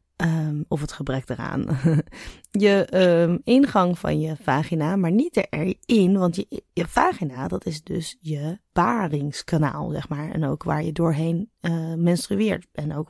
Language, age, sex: Dutch, 20-39, female